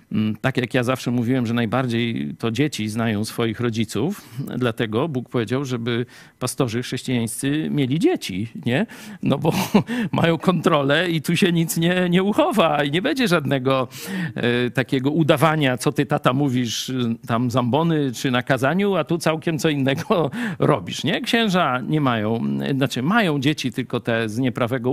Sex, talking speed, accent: male, 150 wpm, native